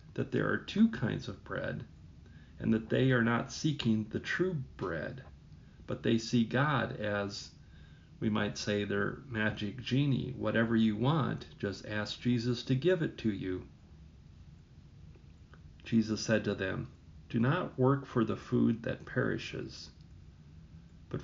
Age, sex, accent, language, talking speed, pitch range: 40-59, male, American, English, 145 wpm, 80-120 Hz